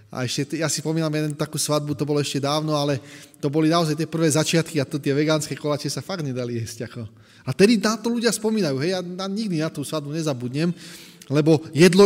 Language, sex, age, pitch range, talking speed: Slovak, male, 20-39, 145-190 Hz, 230 wpm